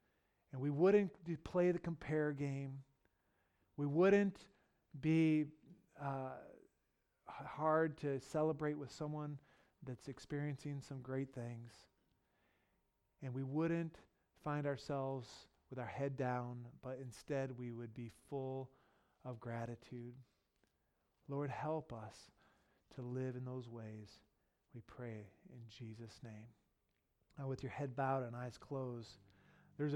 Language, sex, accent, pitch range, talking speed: English, male, American, 120-150 Hz, 120 wpm